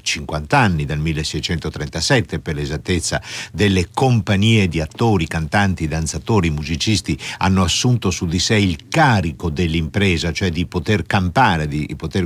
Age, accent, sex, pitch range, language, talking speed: 60-79, native, male, 80-110 Hz, Italian, 130 wpm